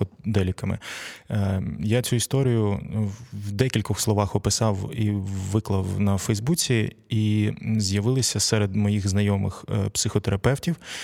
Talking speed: 100 wpm